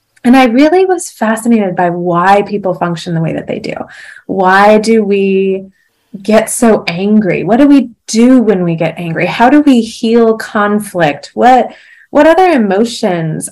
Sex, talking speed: female, 165 wpm